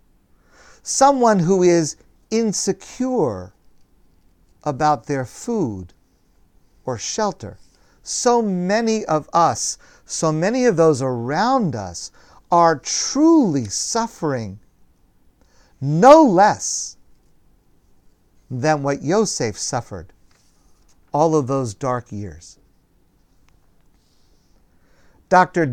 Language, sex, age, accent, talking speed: English, male, 50-69, American, 80 wpm